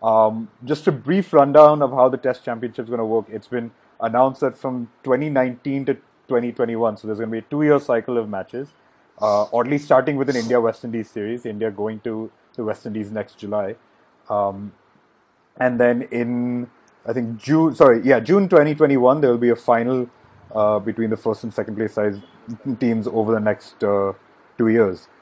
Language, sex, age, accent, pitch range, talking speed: English, male, 30-49, Indian, 110-130 Hz, 190 wpm